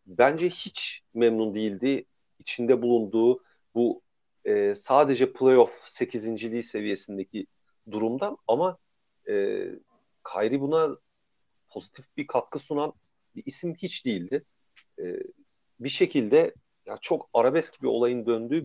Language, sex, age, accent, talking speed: Turkish, male, 40-59, native, 115 wpm